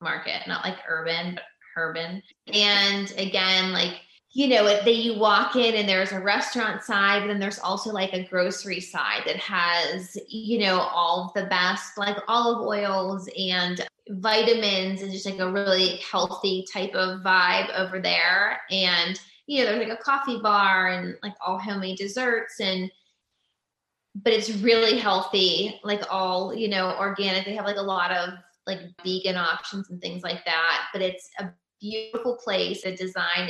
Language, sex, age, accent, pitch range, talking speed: English, female, 20-39, American, 185-220 Hz, 170 wpm